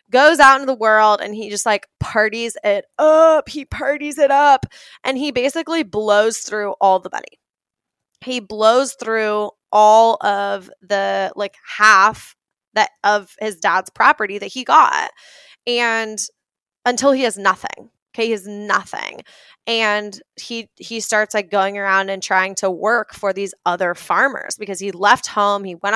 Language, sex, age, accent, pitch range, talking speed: English, female, 10-29, American, 195-230 Hz, 160 wpm